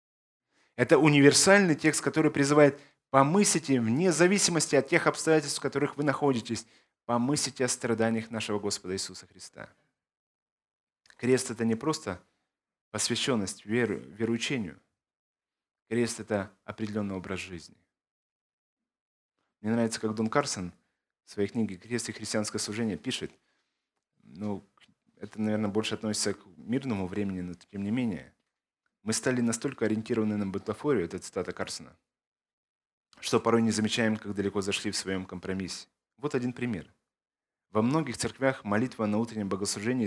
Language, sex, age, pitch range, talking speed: Ukrainian, male, 20-39, 105-130 Hz, 135 wpm